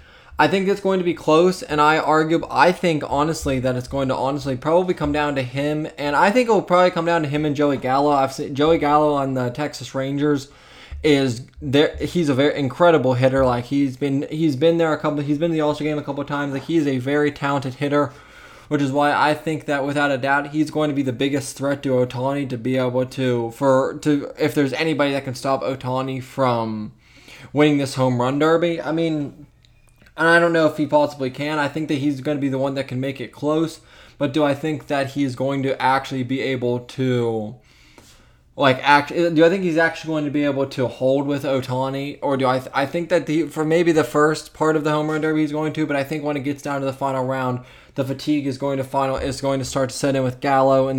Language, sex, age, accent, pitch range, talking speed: English, male, 20-39, American, 130-150 Hz, 245 wpm